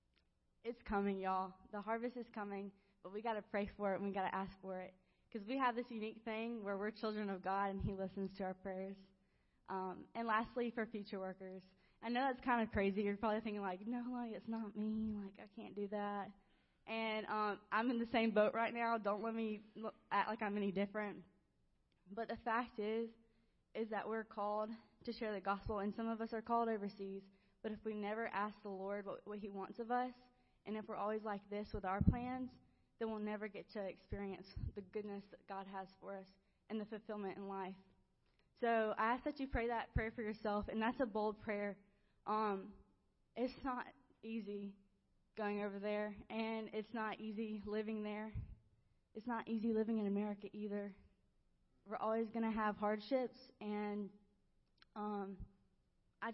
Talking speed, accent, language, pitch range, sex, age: 195 wpm, American, English, 200-225 Hz, female, 10-29